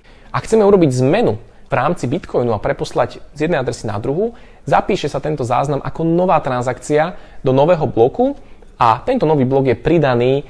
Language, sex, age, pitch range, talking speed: Slovak, male, 20-39, 120-155 Hz, 170 wpm